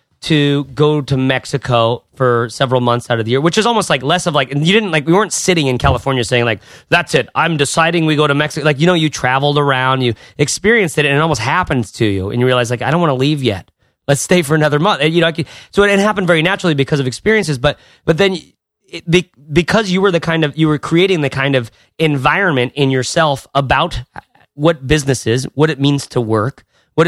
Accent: American